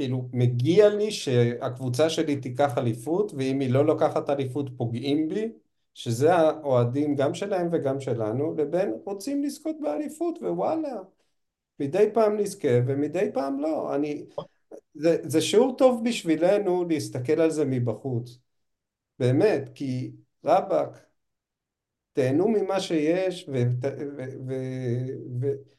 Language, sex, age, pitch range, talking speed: Hebrew, male, 50-69, 135-190 Hz, 120 wpm